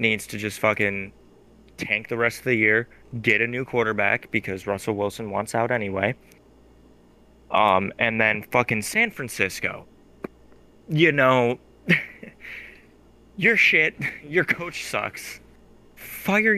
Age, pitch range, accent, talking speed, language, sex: 20-39, 100-125 Hz, American, 125 wpm, English, male